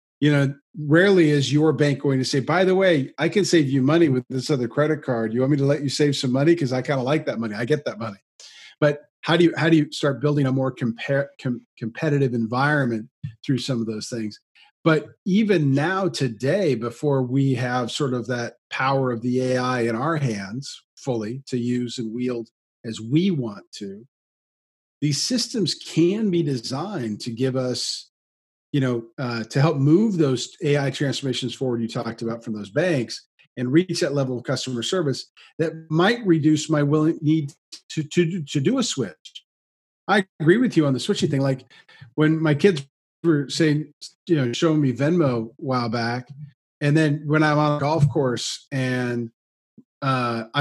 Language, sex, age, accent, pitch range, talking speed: English, male, 40-59, American, 125-155 Hz, 190 wpm